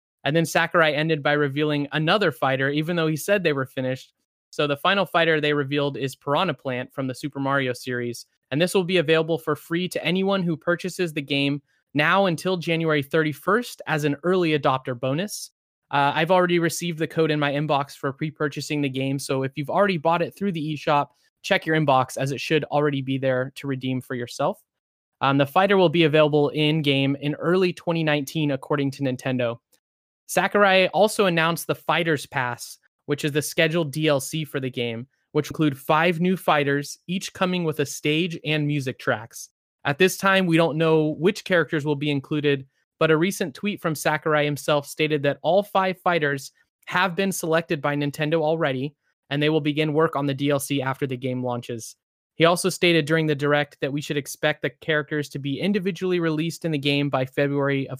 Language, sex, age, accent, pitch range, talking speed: English, male, 20-39, American, 140-165 Hz, 195 wpm